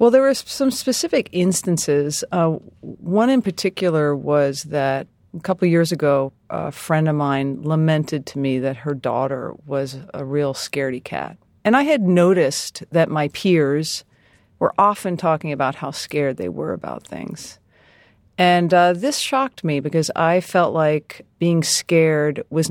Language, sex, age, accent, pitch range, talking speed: English, female, 40-59, American, 145-185 Hz, 160 wpm